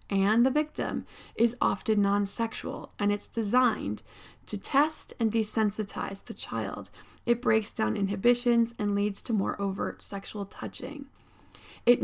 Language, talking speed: English, 135 wpm